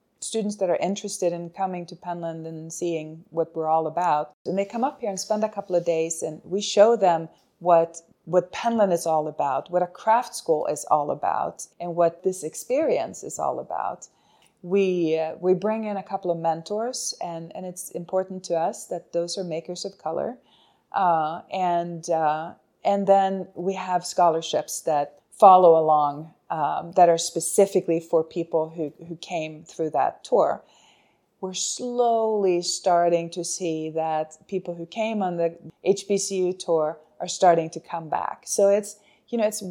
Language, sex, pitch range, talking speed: English, female, 165-195 Hz, 175 wpm